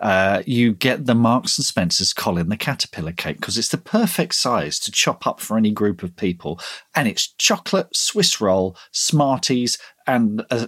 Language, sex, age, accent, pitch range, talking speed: English, male, 40-59, British, 115-165 Hz, 180 wpm